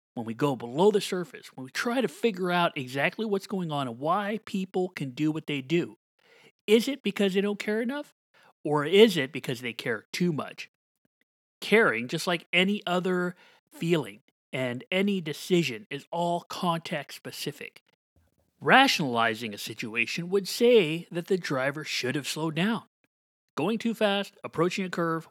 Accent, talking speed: American, 165 wpm